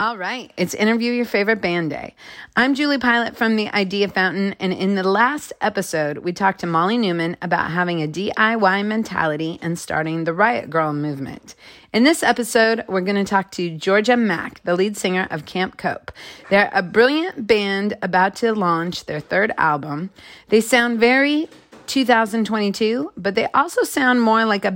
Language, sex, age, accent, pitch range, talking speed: English, female, 30-49, American, 170-225 Hz, 175 wpm